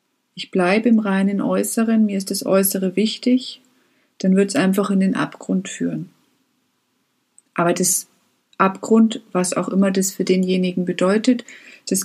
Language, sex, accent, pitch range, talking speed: German, female, German, 185-225 Hz, 145 wpm